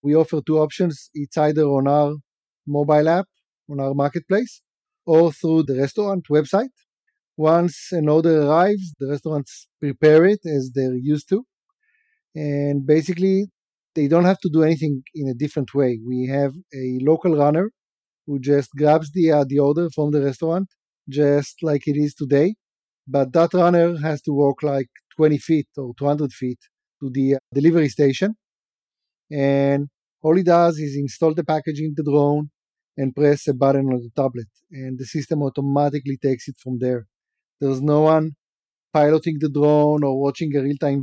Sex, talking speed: male, 165 wpm